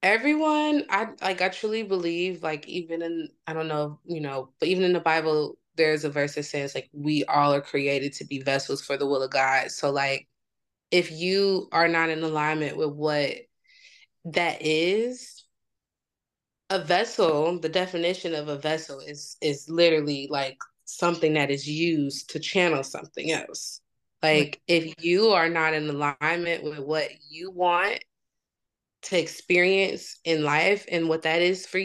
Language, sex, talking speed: English, female, 165 wpm